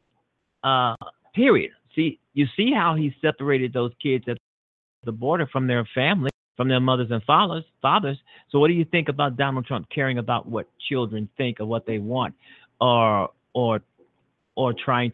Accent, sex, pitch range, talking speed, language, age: American, male, 115-140 Hz, 170 wpm, English, 50-69